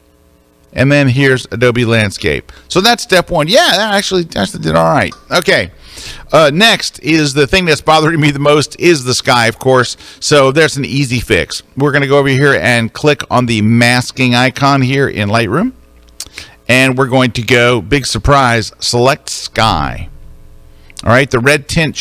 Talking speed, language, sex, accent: 180 wpm, English, male, American